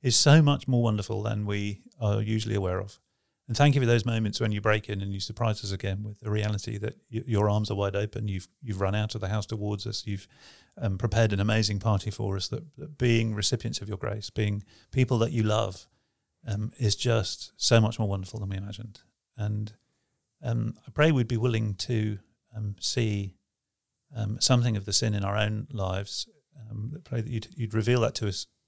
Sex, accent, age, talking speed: male, British, 40-59, 215 wpm